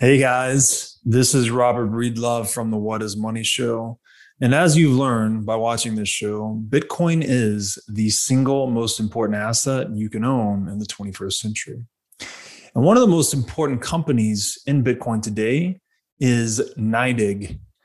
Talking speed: 155 wpm